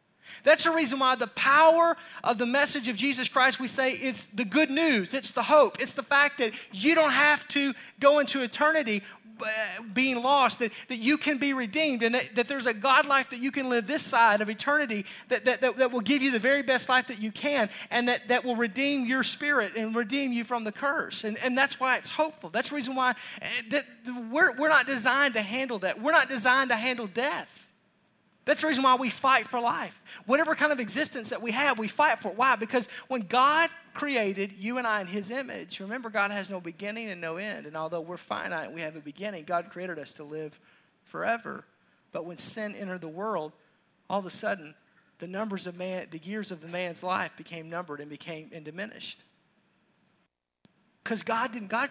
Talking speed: 220 wpm